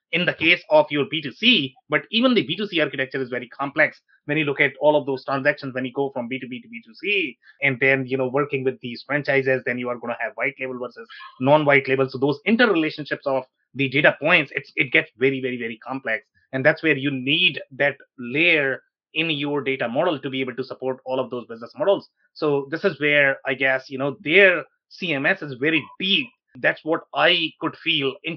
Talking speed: 215 wpm